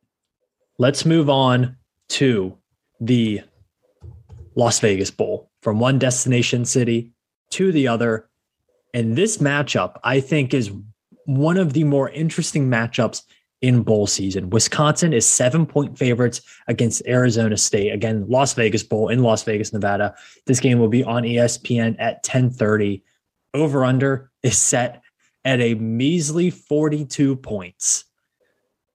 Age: 20-39